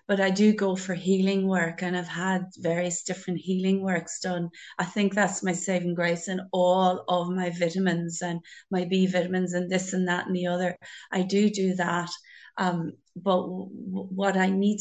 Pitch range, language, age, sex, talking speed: 180-200 Hz, English, 30-49, female, 190 wpm